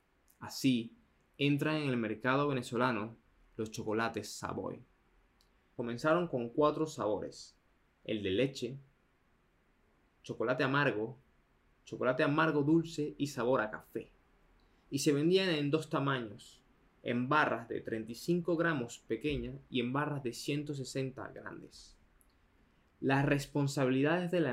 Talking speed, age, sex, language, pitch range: 115 wpm, 20-39, male, Spanish, 115-145 Hz